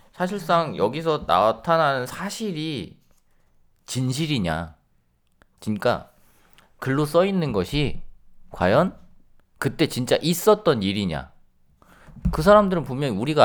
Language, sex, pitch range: Korean, male, 90-145 Hz